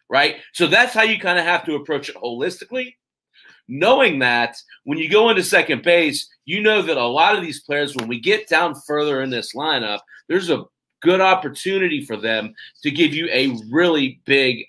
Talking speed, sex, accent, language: 195 wpm, male, American, English